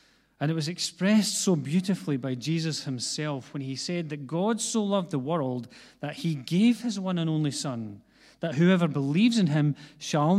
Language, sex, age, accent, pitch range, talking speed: English, male, 40-59, British, 130-165 Hz, 185 wpm